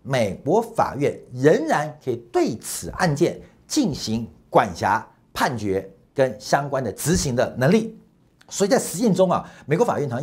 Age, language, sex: 50-69, Chinese, male